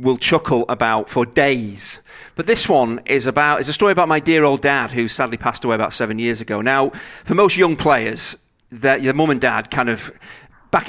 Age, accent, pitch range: 40-59, British, 115-135 Hz